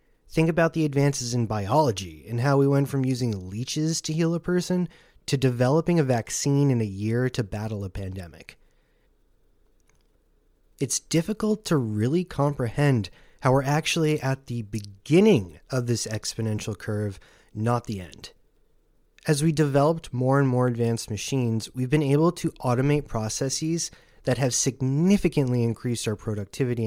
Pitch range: 115-150 Hz